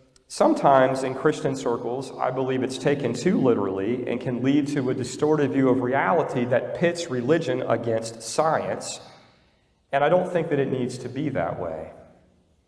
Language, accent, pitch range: English, American, 125-150 Hz